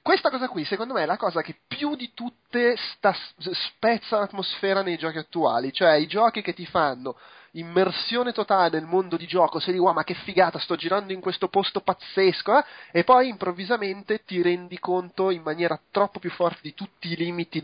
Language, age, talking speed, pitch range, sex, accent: Italian, 30-49, 195 wpm, 155-195 Hz, male, native